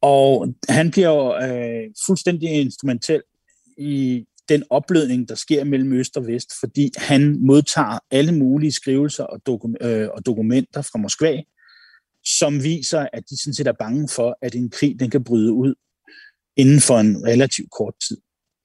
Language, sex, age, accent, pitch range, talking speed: Danish, male, 40-59, native, 120-150 Hz, 155 wpm